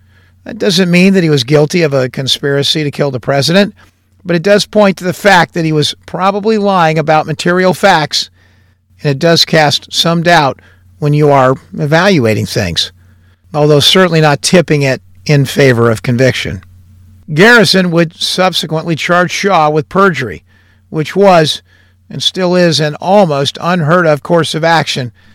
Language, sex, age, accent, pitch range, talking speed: English, male, 50-69, American, 115-180 Hz, 160 wpm